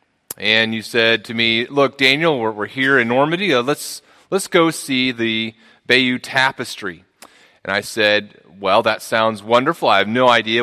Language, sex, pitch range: English, male, 115-150 Hz